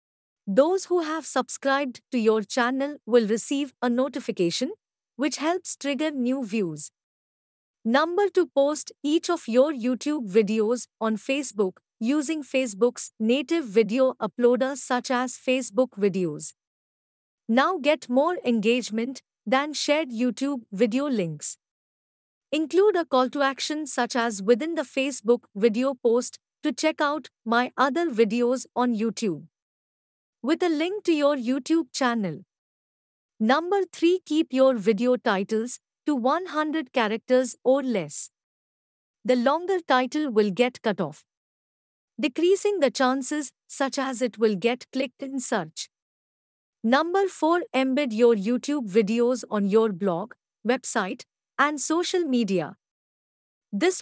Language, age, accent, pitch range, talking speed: Hindi, 50-69, native, 225-290 Hz, 125 wpm